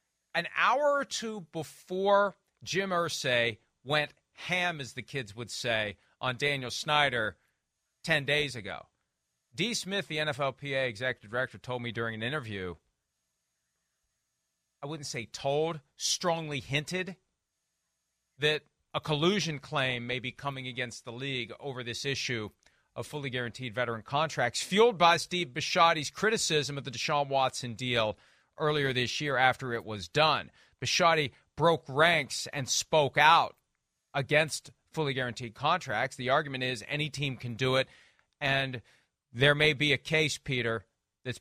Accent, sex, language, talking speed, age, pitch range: American, male, English, 140 wpm, 40-59, 120-150 Hz